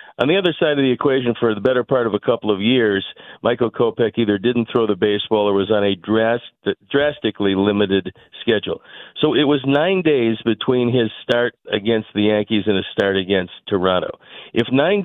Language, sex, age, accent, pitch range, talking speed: English, male, 50-69, American, 105-130 Hz, 190 wpm